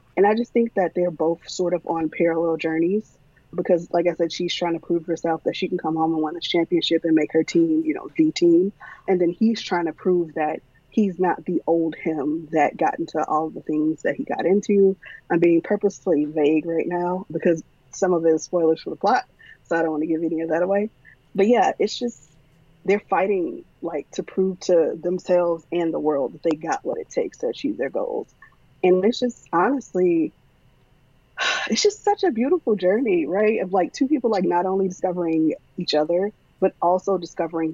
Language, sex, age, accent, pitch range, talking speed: English, female, 20-39, American, 160-210 Hz, 210 wpm